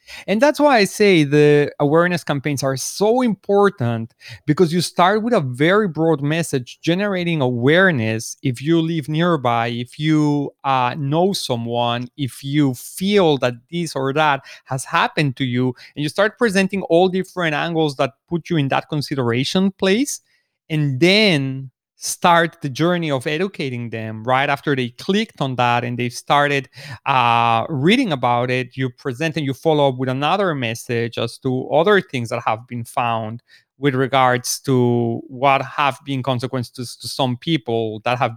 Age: 30-49